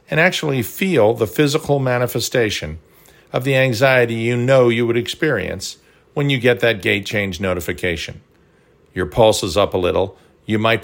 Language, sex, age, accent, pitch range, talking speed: English, male, 50-69, American, 110-145 Hz, 160 wpm